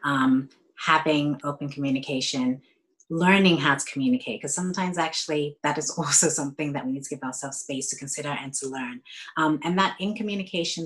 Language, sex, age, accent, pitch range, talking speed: English, female, 30-49, American, 140-190 Hz, 175 wpm